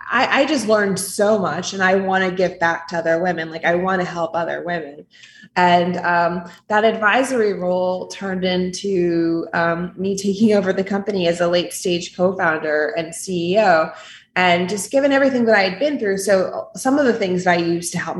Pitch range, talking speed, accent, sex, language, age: 175-215 Hz, 200 wpm, American, female, English, 20-39